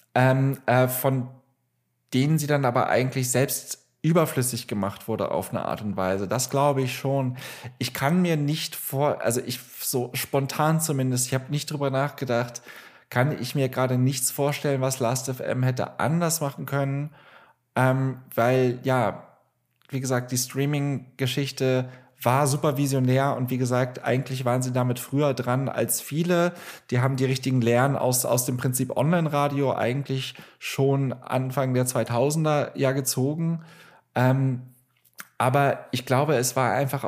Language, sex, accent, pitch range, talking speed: German, male, German, 125-140 Hz, 150 wpm